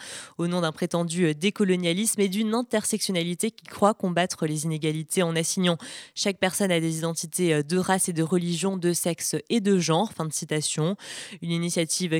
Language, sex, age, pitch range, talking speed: Italian, female, 20-39, 160-185 Hz, 170 wpm